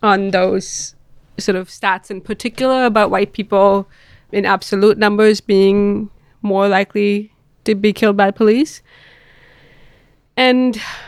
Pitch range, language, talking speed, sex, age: 190-215 Hz, English, 120 wpm, female, 20-39